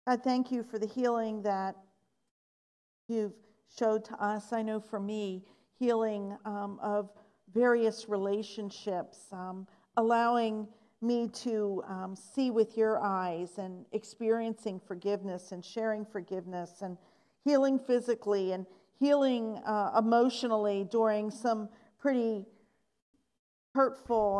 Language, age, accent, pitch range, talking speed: English, 50-69, American, 200-235 Hz, 115 wpm